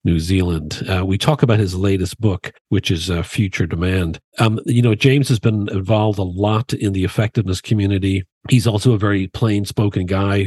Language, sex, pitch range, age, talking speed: English, male, 90-110 Hz, 50-69, 195 wpm